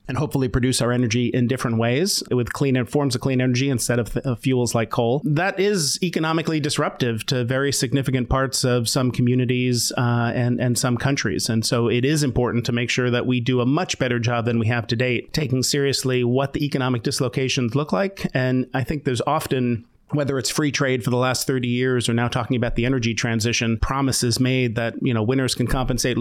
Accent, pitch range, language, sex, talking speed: American, 120-135 Hz, English, male, 210 wpm